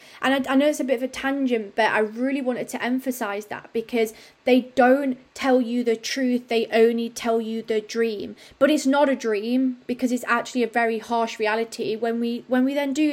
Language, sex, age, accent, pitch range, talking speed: English, female, 20-39, British, 215-250 Hz, 220 wpm